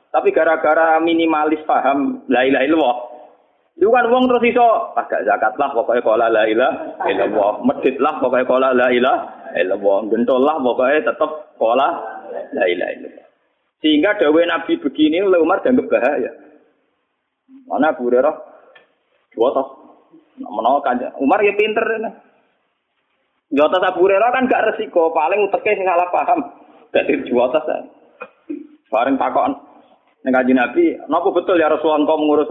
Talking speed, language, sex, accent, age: 135 wpm, Indonesian, male, native, 30-49